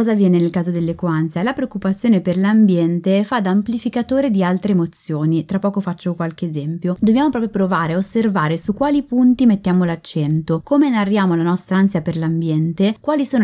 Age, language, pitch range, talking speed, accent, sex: 20-39, Italian, 170-220 Hz, 175 wpm, native, female